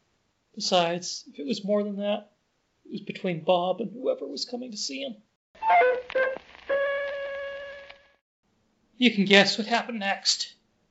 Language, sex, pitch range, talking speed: English, male, 185-250 Hz, 130 wpm